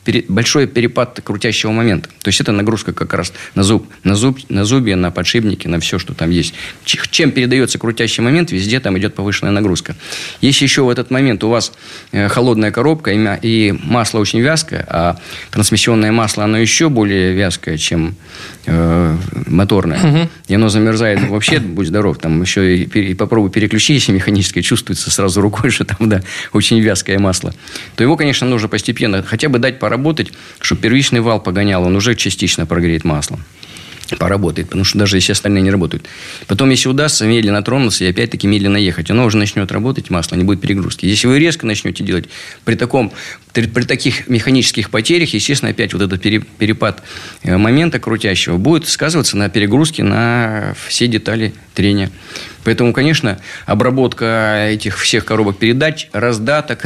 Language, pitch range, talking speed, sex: Russian, 100-120 Hz, 165 wpm, male